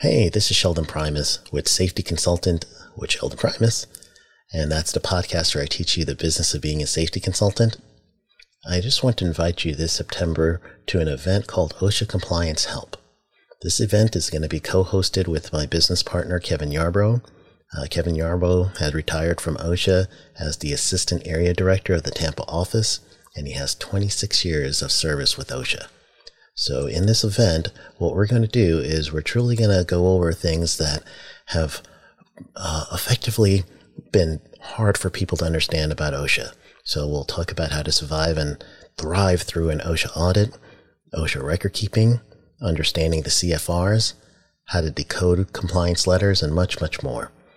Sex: male